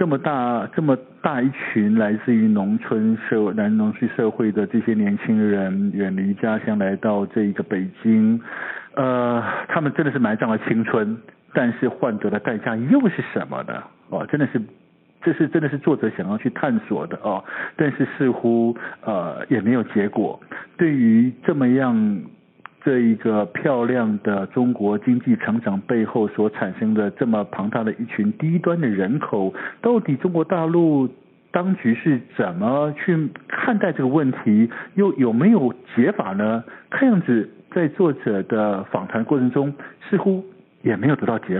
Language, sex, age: Chinese, male, 50-69